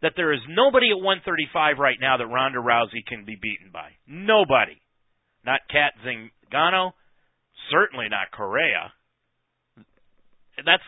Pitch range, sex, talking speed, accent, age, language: 130-215 Hz, male, 125 wpm, American, 40-59, English